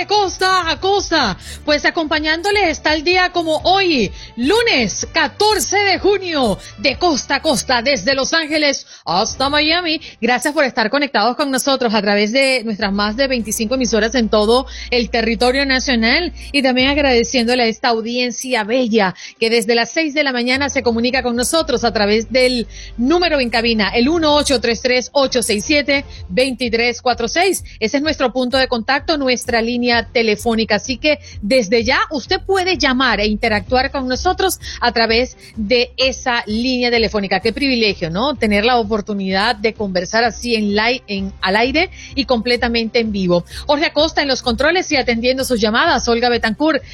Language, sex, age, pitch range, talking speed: Spanish, female, 30-49, 230-285 Hz, 170 wpm